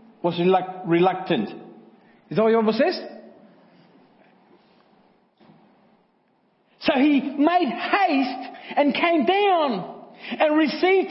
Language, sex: English, male